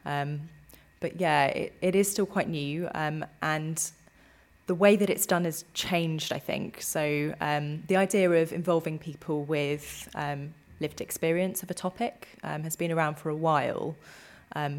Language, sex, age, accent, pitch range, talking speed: English, female, 20-39, British, 145-170 Hz, 170 wpm